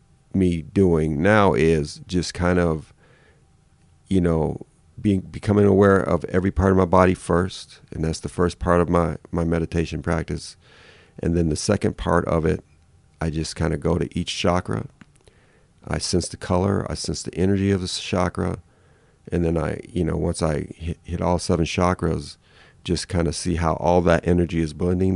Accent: American